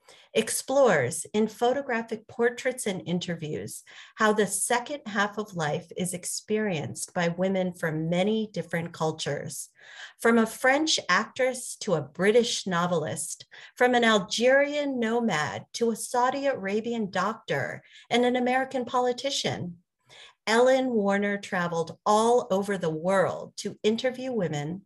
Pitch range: 175-245 Hz